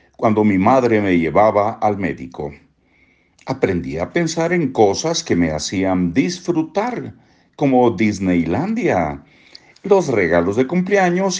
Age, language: 60-79, Spanish